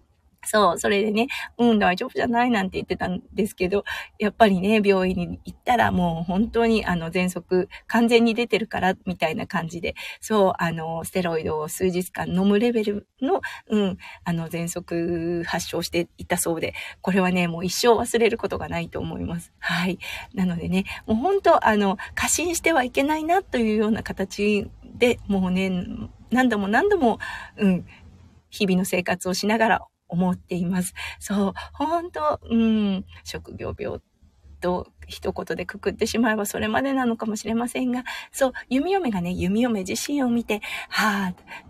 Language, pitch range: Japanese, 180-235 Hz